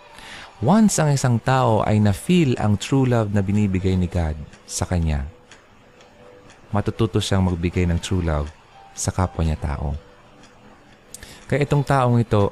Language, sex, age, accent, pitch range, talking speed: Filipino, male, 20-39, native, 85-120 Hz, 140 wpm